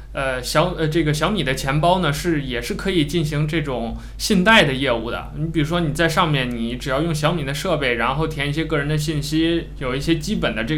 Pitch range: 135-165 Hz